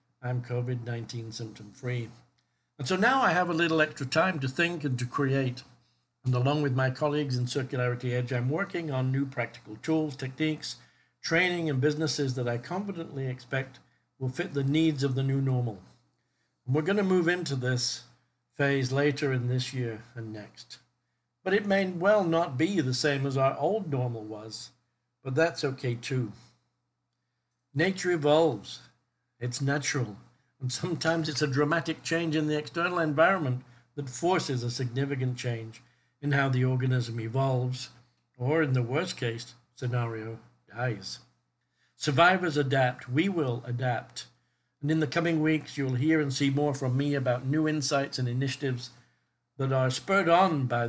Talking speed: 160 wpm